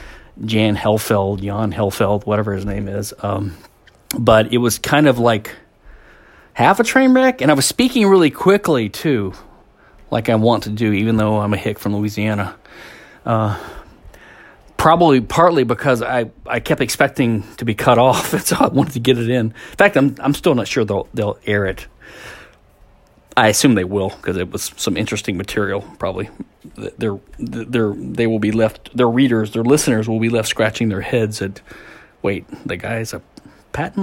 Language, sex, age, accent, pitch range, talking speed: English, male, 40-59, American, 110-160 Hz, 175 wpm